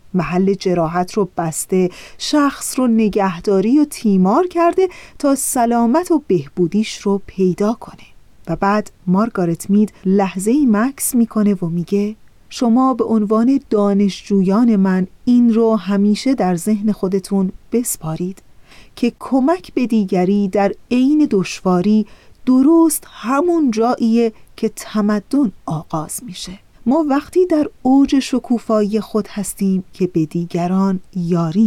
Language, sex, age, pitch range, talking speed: Persian, female, 30-49, 190-240 Hz, 120 wpm